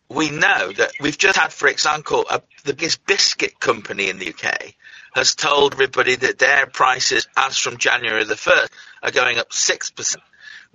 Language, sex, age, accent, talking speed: English, male, 50-69, British, 165 wpm